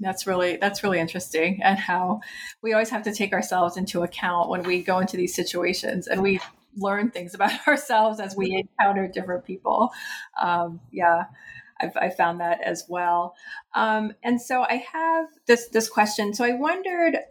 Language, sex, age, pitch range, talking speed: English, female, 30-49, 185-230 Hz, 175 wpm